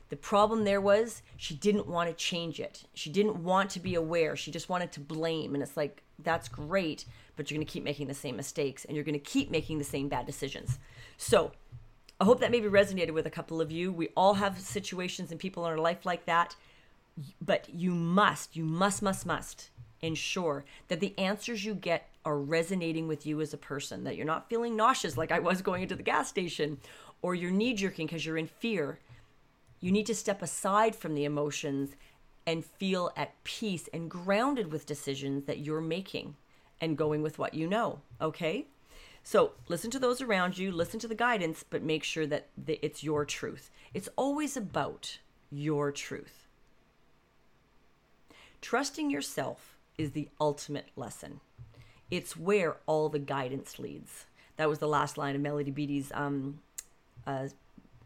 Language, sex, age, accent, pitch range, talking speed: English, female, 40-59, American, 145-190 Hz, 185 wpm